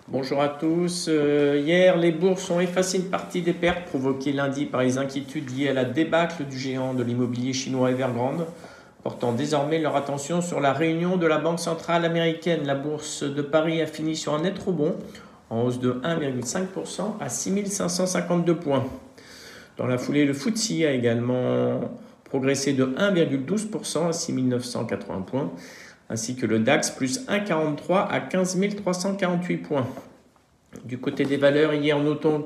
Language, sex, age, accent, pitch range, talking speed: French, male, 50-69, French, 135-175 Hz, 160 wpm